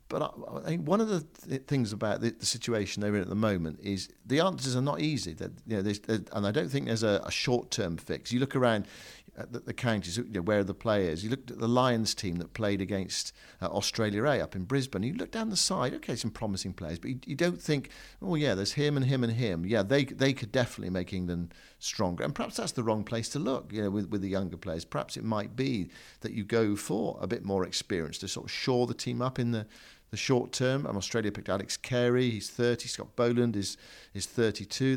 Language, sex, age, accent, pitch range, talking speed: English, male, 50-69, British, 100-125 Hz, 250 wpm